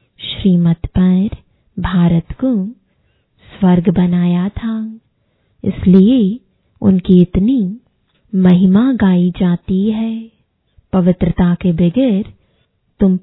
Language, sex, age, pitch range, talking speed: English, female, 20-39, 180-220 Hz, 80 wpm